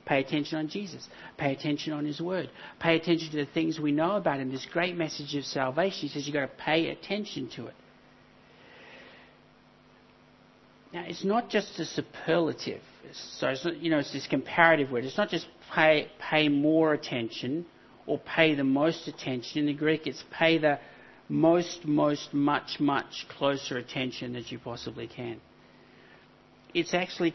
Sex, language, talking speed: male, English, 165 wpm